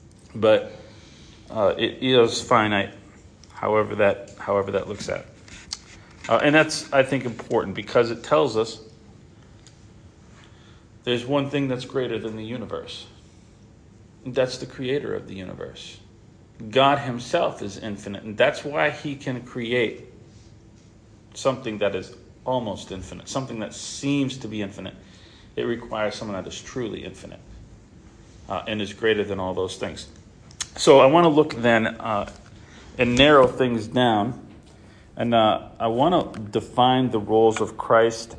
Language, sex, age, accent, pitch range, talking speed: English, male, 40-59, American, 105-125 Hz, 145 wpm